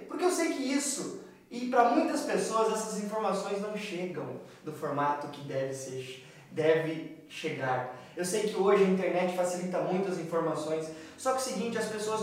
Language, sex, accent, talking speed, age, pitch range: Portuguese, male, Brazilian, 170 wpm, 20-39, 185-235 Hz